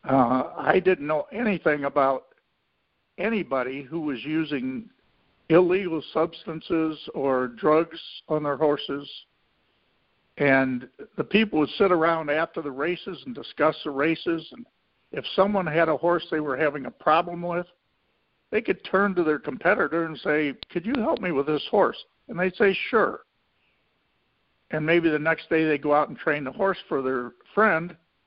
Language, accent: English, American